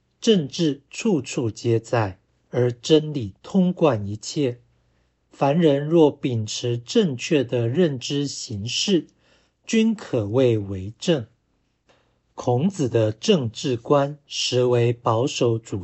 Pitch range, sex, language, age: 110-145 Hz, male, Chinese, 60-79